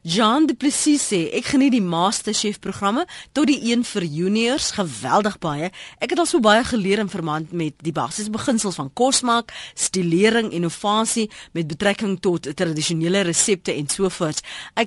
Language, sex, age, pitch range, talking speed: Dutch, female, 30-49, 175-240 Hz, 155 wpm